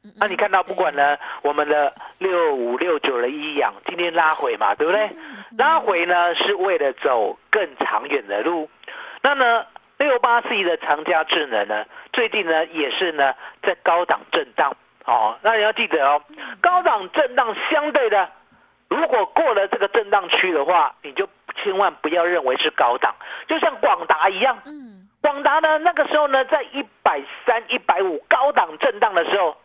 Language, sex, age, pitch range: Chinese, male, 50-69, 200-325 Hz